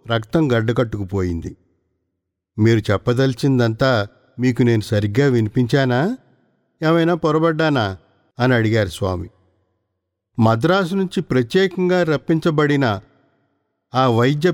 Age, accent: 50-69, native